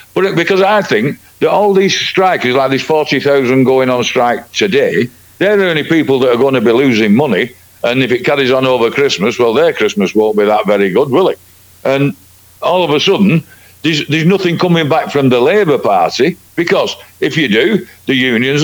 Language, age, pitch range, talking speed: English, 60-79, 130-190 Hz, 200 wpm